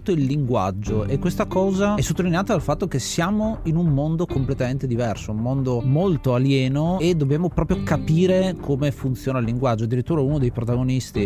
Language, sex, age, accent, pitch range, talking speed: Italian, male, 30-49, native, 120-150 Hz, 170 wpm